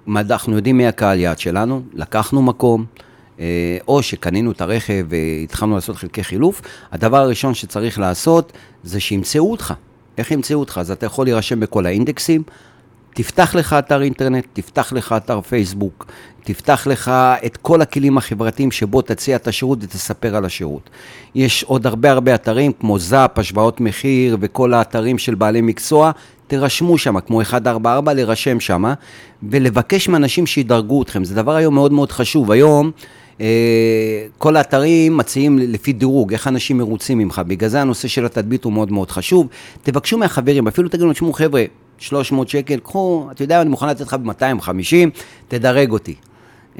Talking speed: 155 wpm